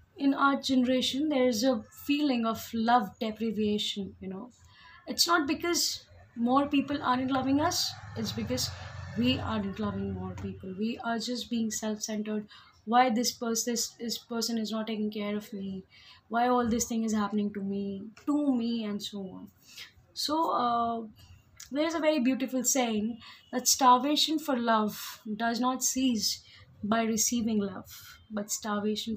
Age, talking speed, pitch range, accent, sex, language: 20-39, 160 wpm, 210-260 Hz, native, female, Hindi